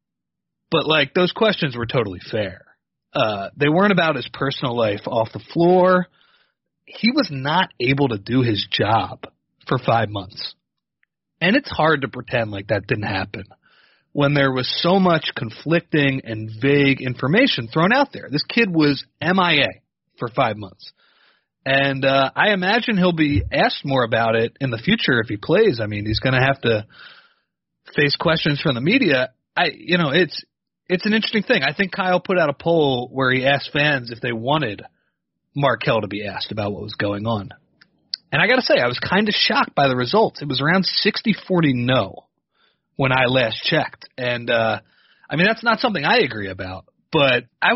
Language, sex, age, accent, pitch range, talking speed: English, male, 30-49, American, 125-180 Hz, 190 wpm